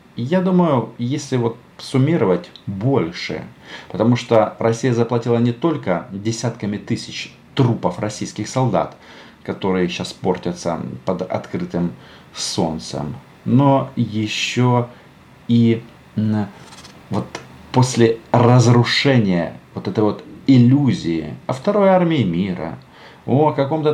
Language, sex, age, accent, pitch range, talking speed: Russian, male, 40-59, native, 90-130 Hz, 95 wpm